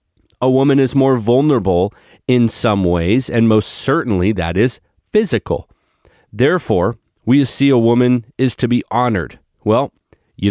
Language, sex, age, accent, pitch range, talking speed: English, male, 40-59, American, 100-130 Hz, 145 wpm